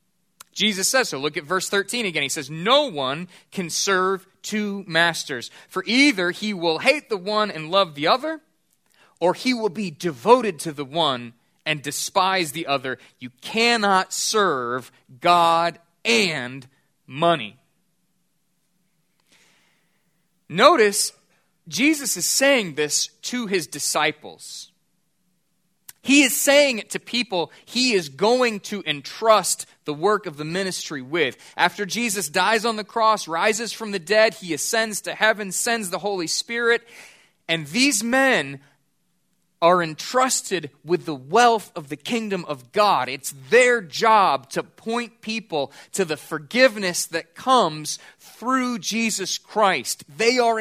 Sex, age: male, 30-49